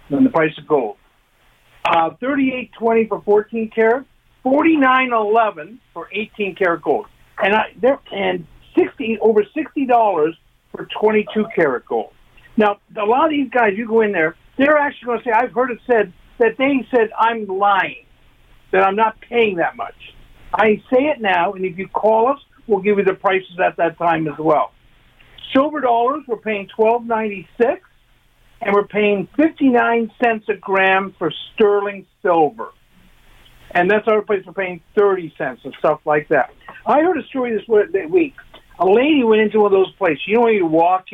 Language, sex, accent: English, male, American